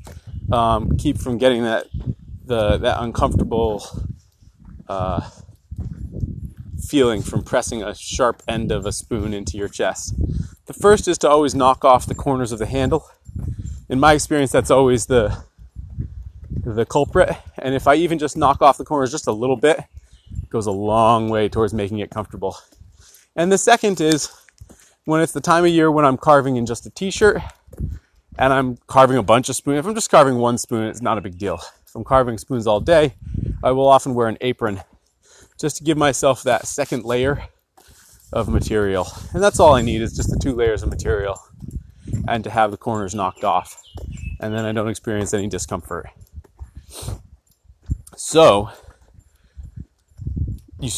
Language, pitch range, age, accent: English, 100-140 Hz, 30-49, American